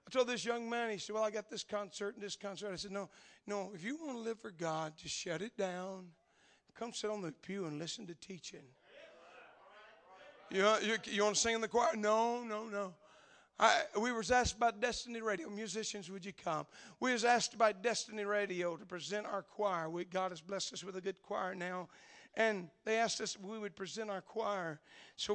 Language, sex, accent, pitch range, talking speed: English, male, American, 180-215 Hz, 225 wpm